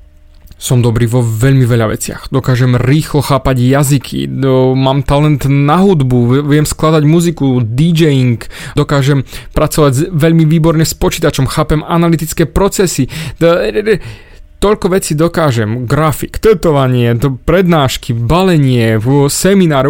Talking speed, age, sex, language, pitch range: 120 wpm, 30-49, male, Slovak, 120-160 Hz